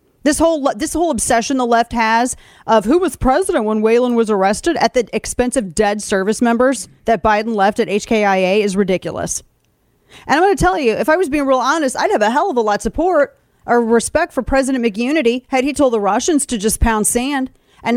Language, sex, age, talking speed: English, female, 30-49, 220 wpm